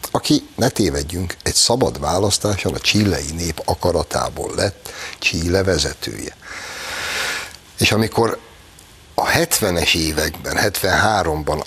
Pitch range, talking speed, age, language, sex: 80-100 Hz, 100 wpm, 60-79, Hungarian, male